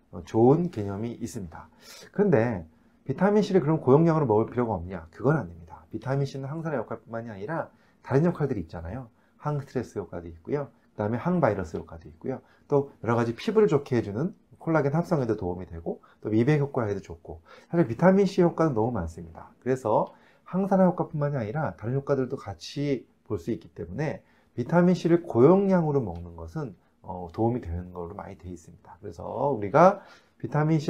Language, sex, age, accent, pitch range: Korean, male, 30-49, native, 95-150 Hz